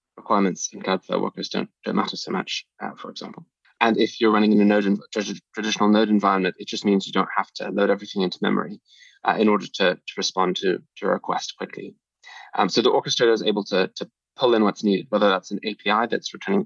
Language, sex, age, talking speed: English, male, 20-39, 235 wpm